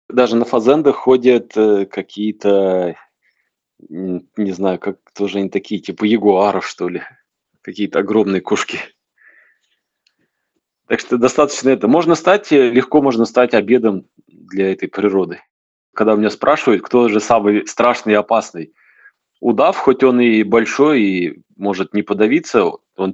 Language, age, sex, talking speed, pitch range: Russian, 20-39, male, 130 wpm, 100-120 Hz